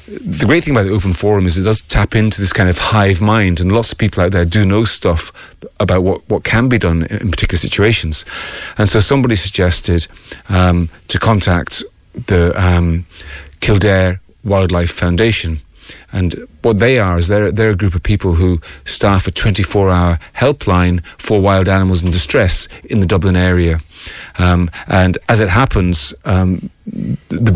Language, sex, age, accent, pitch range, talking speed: English, male, 40-59, British, 90-105 Hz, 170 wpm